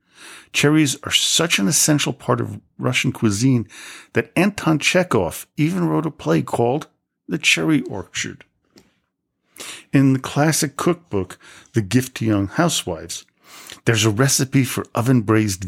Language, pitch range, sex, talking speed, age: English, 105-140 Hz, male, 130 wpm, 50-69